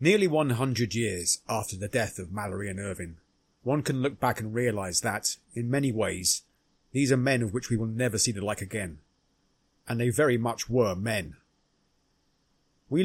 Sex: male